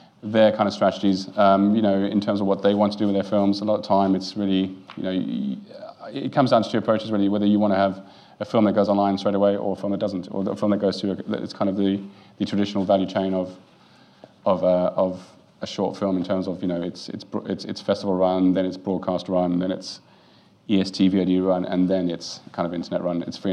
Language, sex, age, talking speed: English, male, 30-49, 245 wpm